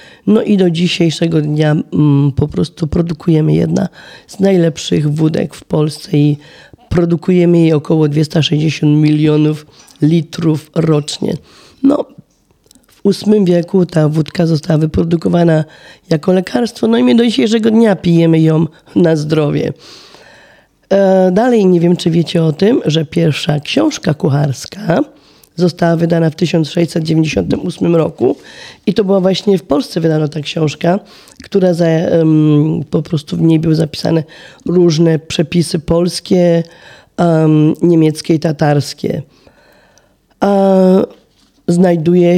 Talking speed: 120 wpm